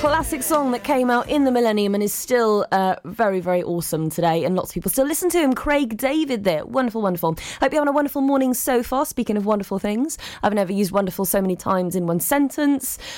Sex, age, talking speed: female, 20-39, 230 wpm